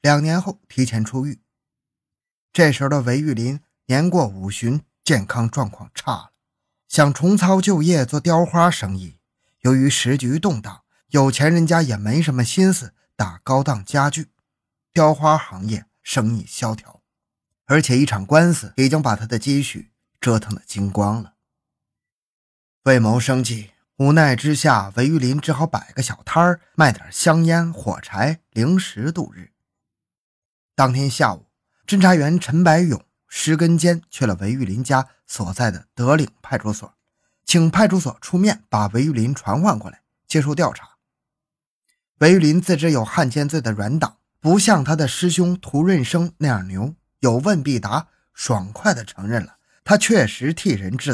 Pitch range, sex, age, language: 115-165 Hz, male, 20-39, Chinese